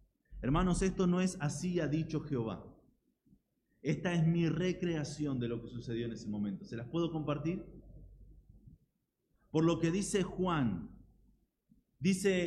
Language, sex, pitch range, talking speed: Spanish, male, 125-185 Hz, 140 wpm